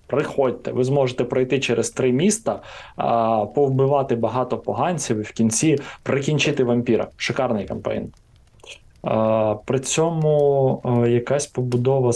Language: Ukrainian